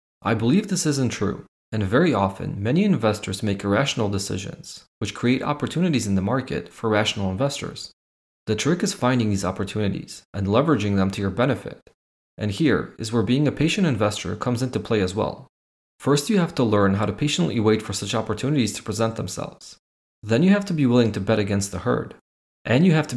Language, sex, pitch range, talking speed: English, male, 100-130 Hz, 200 wpm